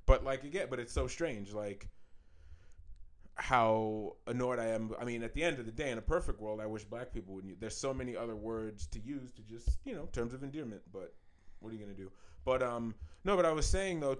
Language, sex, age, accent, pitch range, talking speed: English, male, 30-49, American, 100-125 Hz, 250 wpm